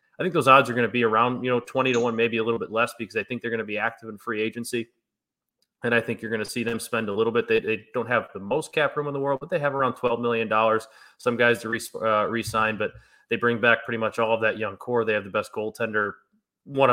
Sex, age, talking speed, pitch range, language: male, 20-39, 290 wpm, 115-130 Hz, English